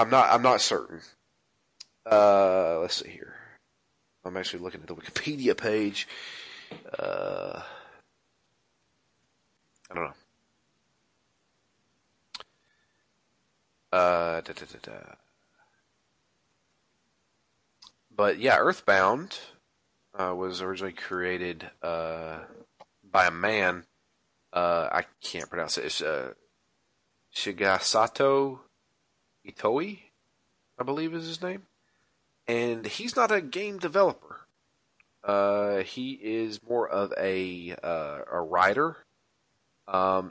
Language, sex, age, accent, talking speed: English, male, 30-49, American, 100 wpm